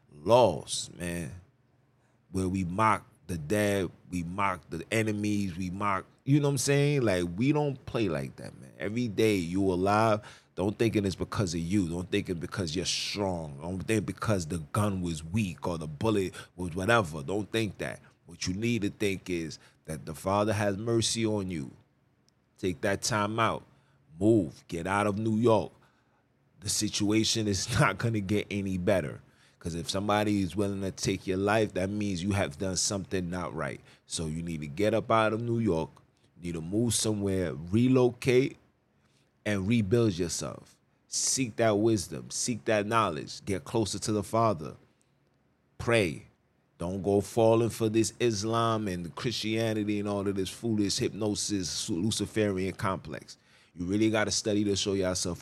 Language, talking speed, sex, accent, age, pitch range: English, 175 wpm, male, American, 30-49, 90-110 Hz